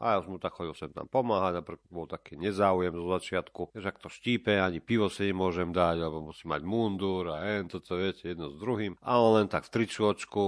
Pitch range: 85-105 Hz